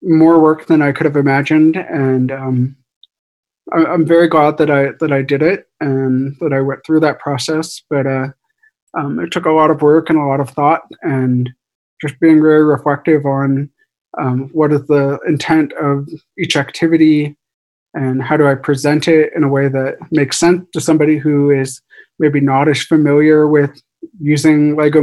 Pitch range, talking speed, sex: 140-160 Hz, 180 wpm, male